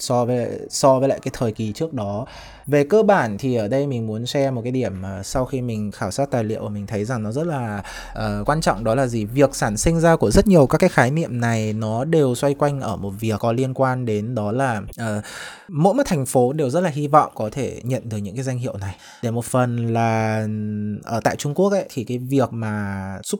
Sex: male